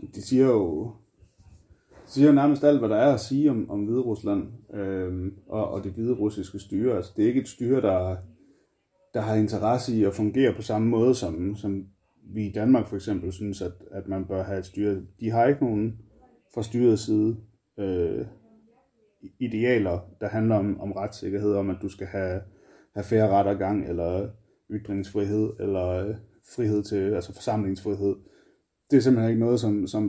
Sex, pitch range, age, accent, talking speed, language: male, 100-115 Hz, 30-49, native, 180 wpm, Danish